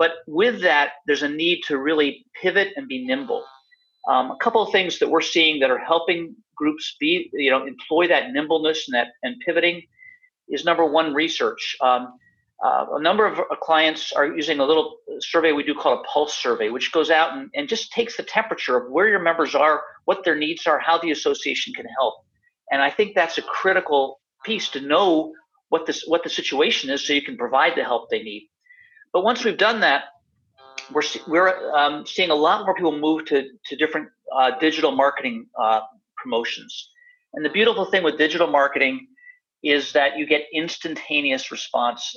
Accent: American